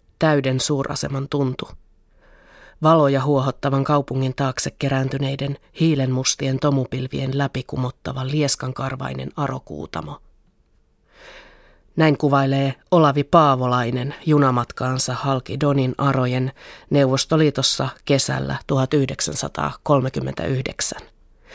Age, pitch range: 30-49, 135-160 Hz